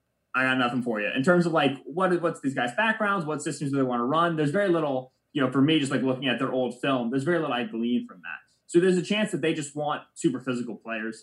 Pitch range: 120-150 Hz